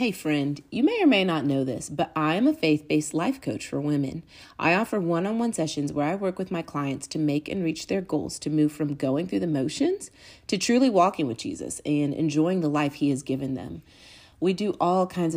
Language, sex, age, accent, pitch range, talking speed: English, female, 30-49, American, 140-195 Hz, 225 wpm